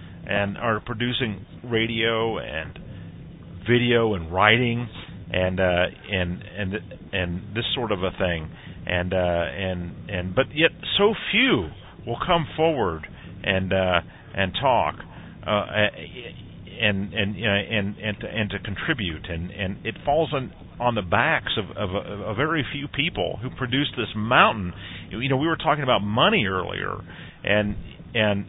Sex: male